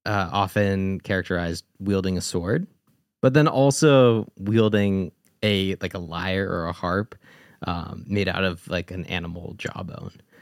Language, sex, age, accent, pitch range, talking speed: English, male, 20-39, American, 90-115 Hz, 145 wpm